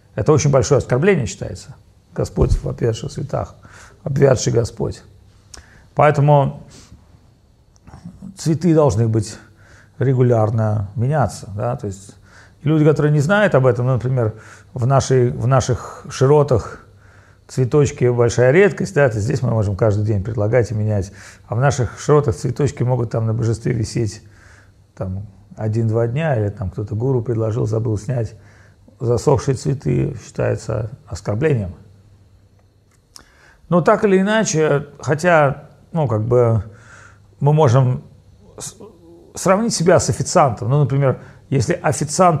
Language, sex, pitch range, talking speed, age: Russian, male, 105-145 Hz, 115 wpm, 40-59